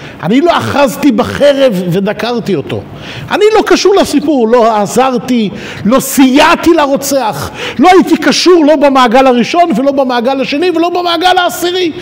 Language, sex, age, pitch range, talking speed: Hebrew, male, 50-69, 230-345 Hz, 135 wpm